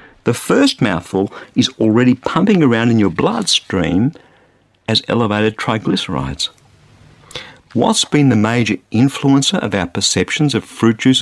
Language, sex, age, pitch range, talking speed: English, male, 50-69, 100-135 Hz, 130 wpm